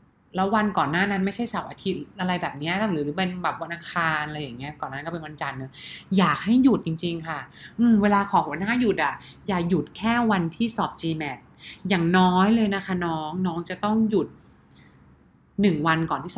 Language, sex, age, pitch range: English, female, 20-39, 165-205 Hz